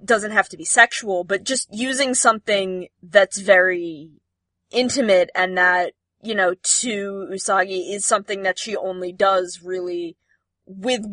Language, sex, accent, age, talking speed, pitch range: English, female, American, 20-39, 140 wpm, 175-210 Hz